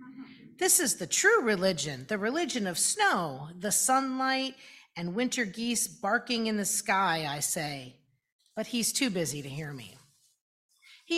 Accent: American